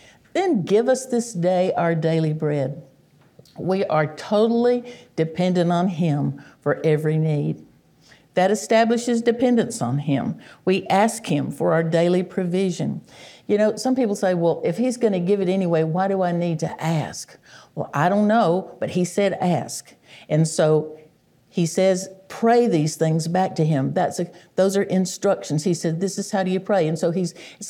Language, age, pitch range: English, 60-79, 160-200 Hz